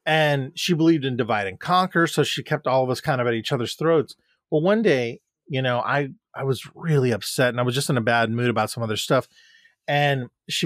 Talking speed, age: 240 wpm, 30-49